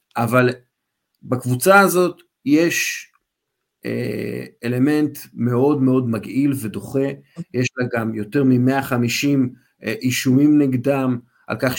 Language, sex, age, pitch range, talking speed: Hebrew, male, 50-69, 115-140 Hz, 95 wpm